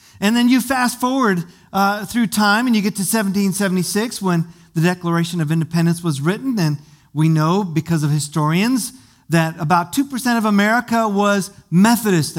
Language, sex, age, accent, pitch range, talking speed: English, male, 50-69, American, 155-200 Hz, 160 wpm